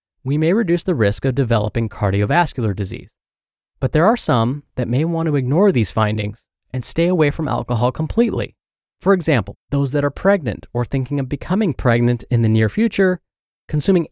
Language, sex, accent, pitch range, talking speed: English, male, American, 120-165 Hz, 180 wpm